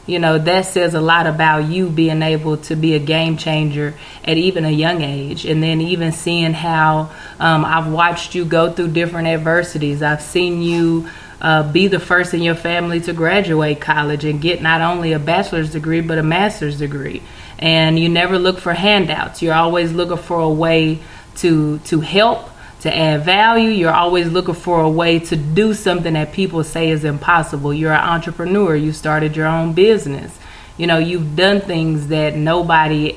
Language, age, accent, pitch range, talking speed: English, 20-39, American, 155-175 Hz, 190 wpm